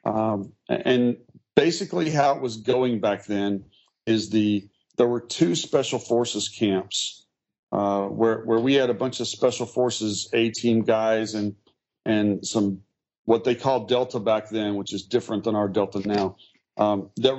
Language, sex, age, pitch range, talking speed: English, male, 40-59, 110-130 Hz, 160 wpm